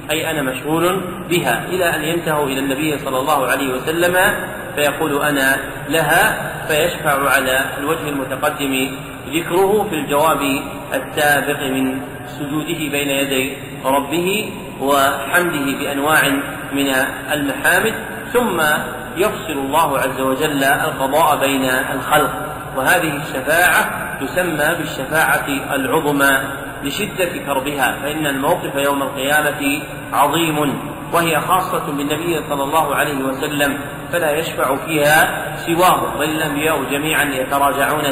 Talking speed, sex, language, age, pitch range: 105 wpm, male, Arabic, 40-59, 140-160 Hz